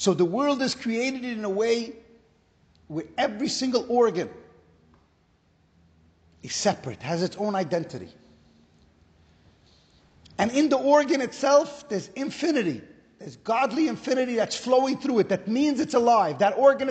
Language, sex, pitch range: English, male, 170-245 Hz